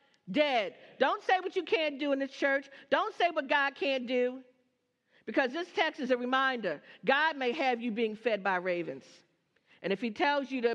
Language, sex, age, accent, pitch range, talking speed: English, female, 50-69, American, 200-270 Hz, 200 wpm